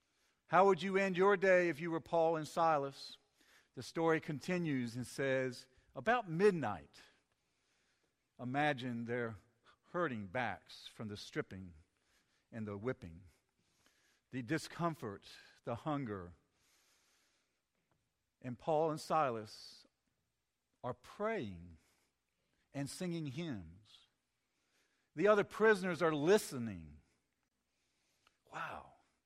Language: English